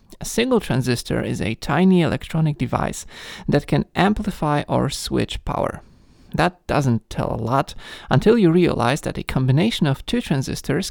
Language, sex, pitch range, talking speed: English, male, 130-185 Hz, 155 wpm